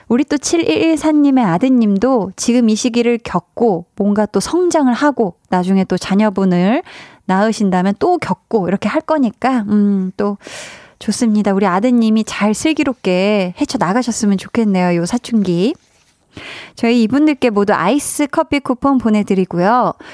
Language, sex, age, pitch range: Korean, female, 20-39, 200-270 Hz